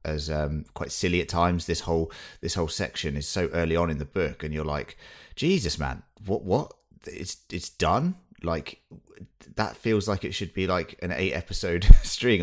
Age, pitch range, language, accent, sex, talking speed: 30-49, 75-90 Hz, English, British, male, 195 wpm